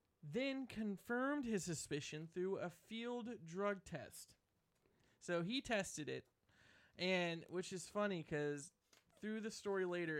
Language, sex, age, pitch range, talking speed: English, male, 20-39, 165-220 Hz, 130 wpm